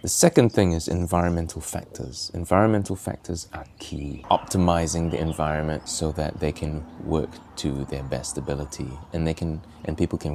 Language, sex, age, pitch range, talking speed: English, male, 20-39, 75-95 Hz, 160 wpm